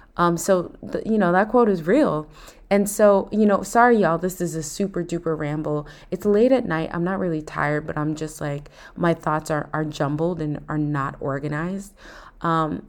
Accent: American